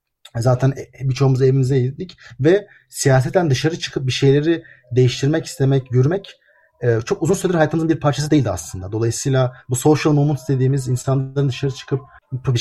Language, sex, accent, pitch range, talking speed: Turkish, male, native, 130-170 Hz, 145 wpm